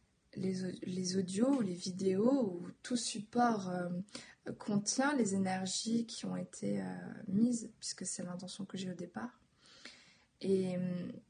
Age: 20-39